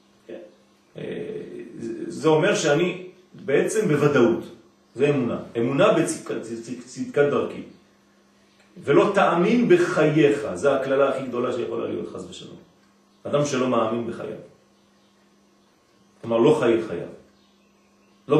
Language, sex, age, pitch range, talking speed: French, male, 40-59, 115-145 Hz, 105 wpm